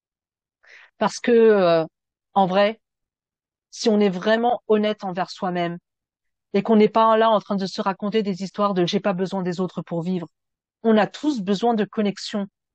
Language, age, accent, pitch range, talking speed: French, 40-59, French, 195-225 Hz, 180 wpm